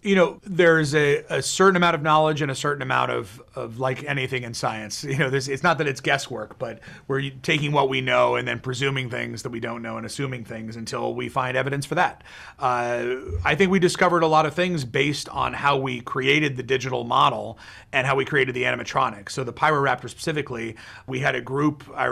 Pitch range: 125-150 Hz